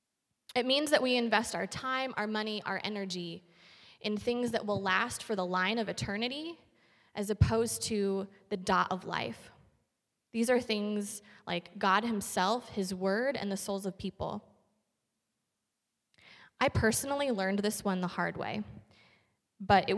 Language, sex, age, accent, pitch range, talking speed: English, female, 20-39, American, 195-225 Hz, 155 wpm